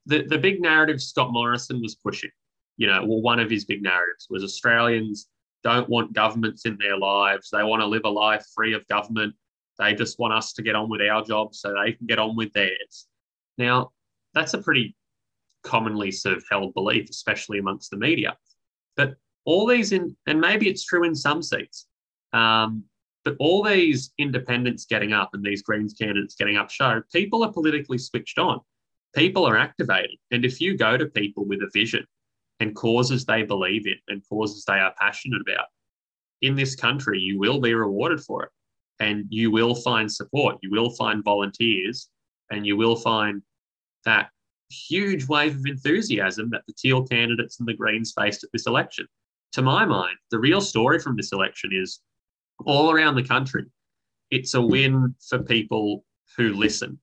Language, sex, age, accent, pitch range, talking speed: English, male, 20-39, Australian, 105-130 Hz, 185 wpm